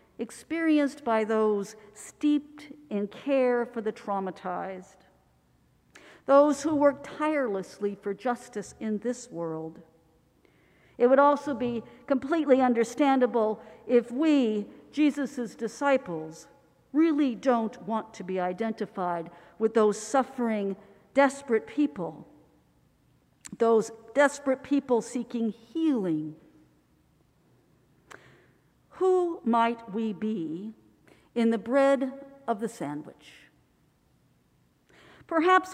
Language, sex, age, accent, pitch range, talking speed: English, female, 50-69, American, 205-275 Hz, 90 wpm